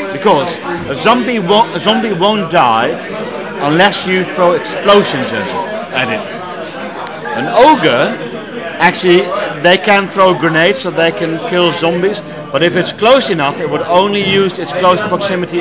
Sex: male